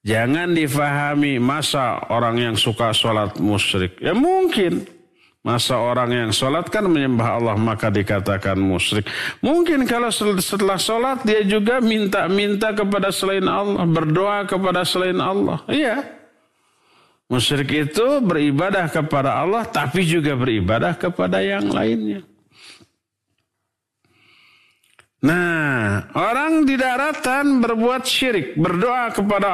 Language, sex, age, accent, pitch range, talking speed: Indonesian, male, 50-69, native, 120-205 Hz, 110 wpm